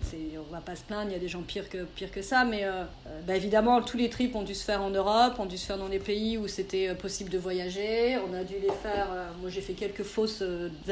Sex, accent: female, French